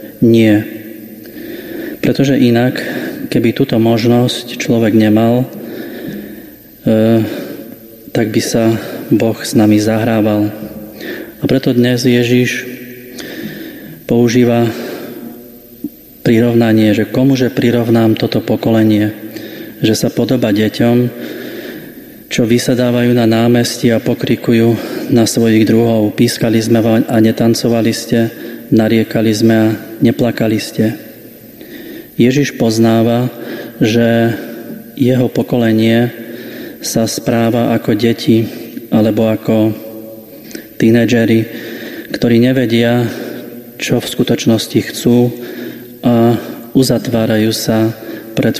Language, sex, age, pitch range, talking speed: Slovak, male, 30-49, 110-120 Hz, 90 wpm